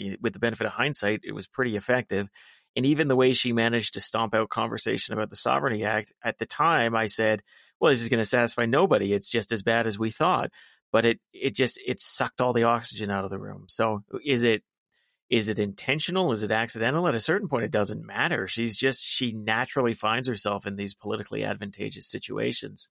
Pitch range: 105-140 Hz